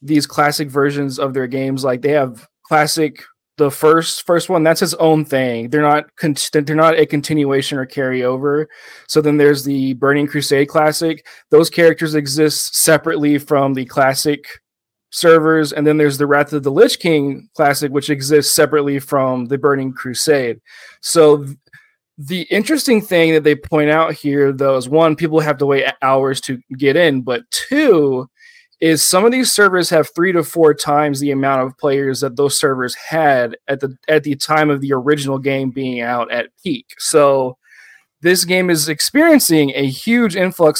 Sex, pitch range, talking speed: male, 135-160 Hz, 180 wpm